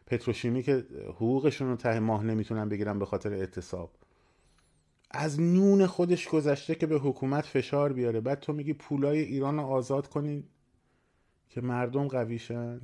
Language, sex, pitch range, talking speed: Persian, male, 105-130 Hz, 140 wpm